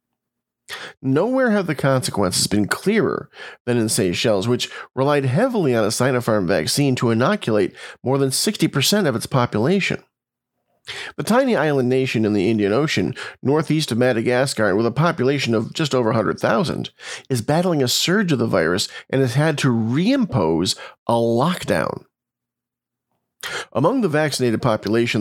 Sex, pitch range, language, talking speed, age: male, 115-155 Hz, English, 145 wpm, 40-59